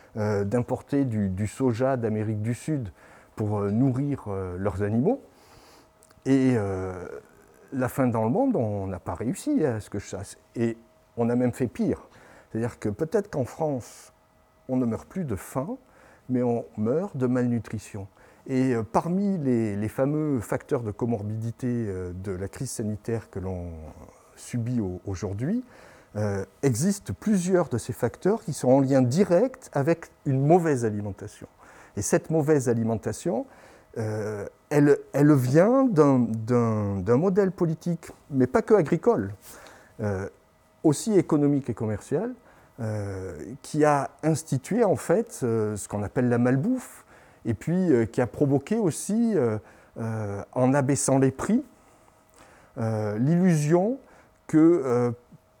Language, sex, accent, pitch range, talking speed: French, male, French, 105-150 Hz, 150 wpm